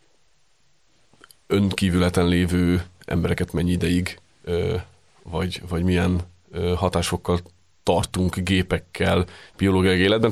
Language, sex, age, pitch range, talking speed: Hungarian, male, 30-49, 85-95 Hz, 80 wpm